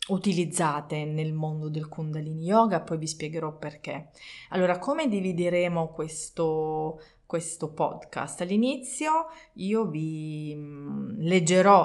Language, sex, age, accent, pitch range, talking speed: Italian, female, 30-49, native, 160-190 Hz, 100 wpm